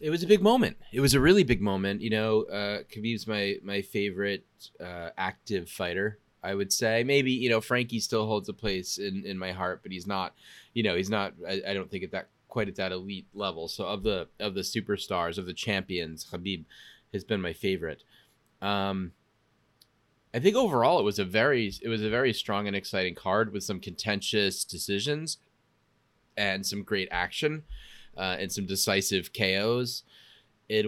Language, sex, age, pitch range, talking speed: English, male, 30-49, 95-115 Hz, 190 wpm